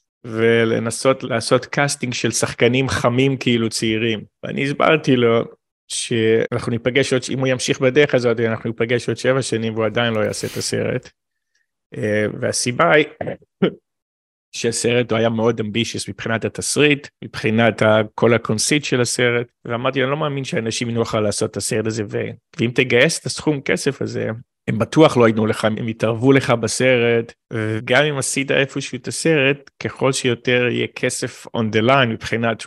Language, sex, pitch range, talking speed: Hebrew, male, 110-135 Hz, 155 wpm